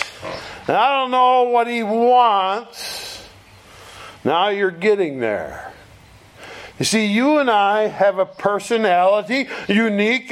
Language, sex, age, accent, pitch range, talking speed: English, male, 50-69, American, 175-235 Hz, 115 wpm